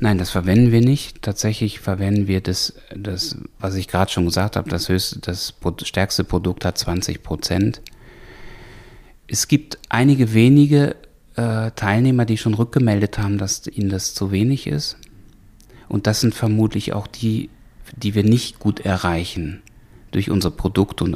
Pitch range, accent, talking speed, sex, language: 95-115 Hz, German, 155 wpm, male, German